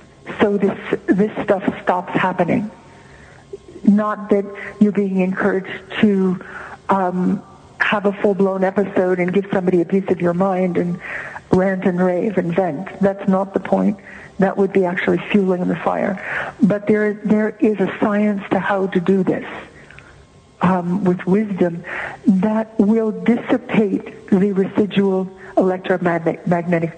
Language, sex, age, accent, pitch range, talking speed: English, female, 60-79, American, 190-215 Hz, 140 wpm